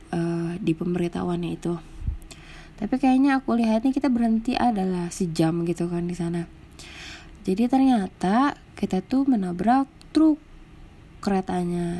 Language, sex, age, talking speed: Indonesian, female, 20-39, 110 wpm